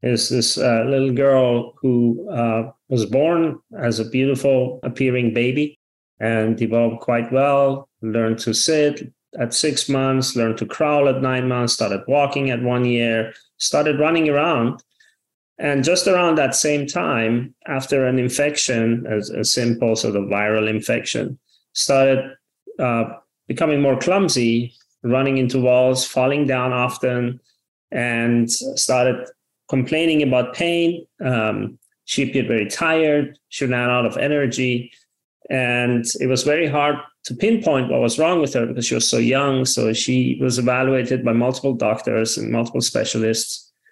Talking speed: 145 wpm